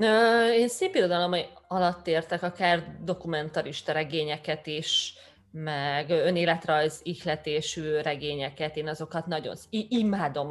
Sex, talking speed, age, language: female, 95 wpm, 20-39, Hungarian